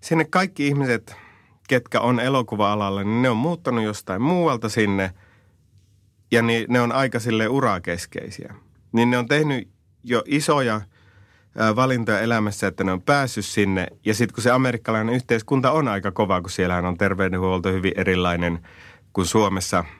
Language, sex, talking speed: Finnish, male, 155 wpm